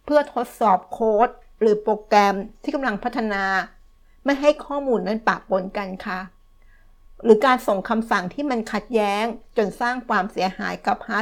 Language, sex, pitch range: Thai, female, 195-240 Hz